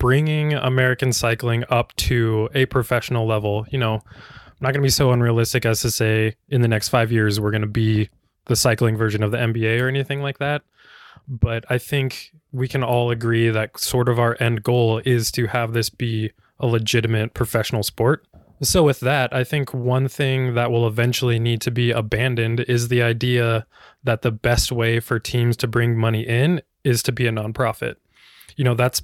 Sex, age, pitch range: male, 20-39, 115-130 Hz